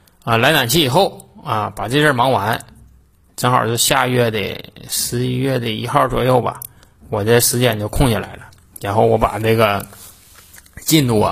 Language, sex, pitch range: Chinese, male, 105-125 Hz